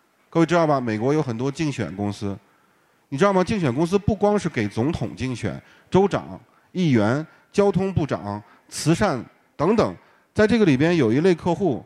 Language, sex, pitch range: Chinese, male, 110-160 Hz